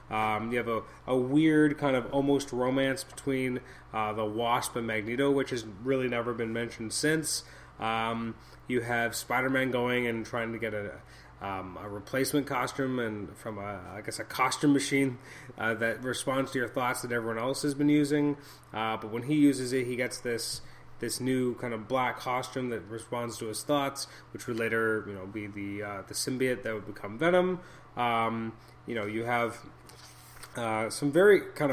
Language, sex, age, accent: English, male, 20-39, American